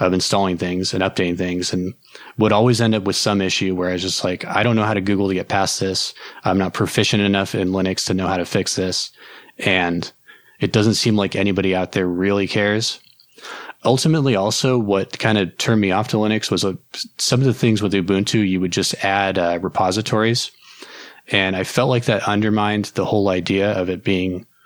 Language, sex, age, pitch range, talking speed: English, male, 20-39, 95-110 Hz, 210 wpm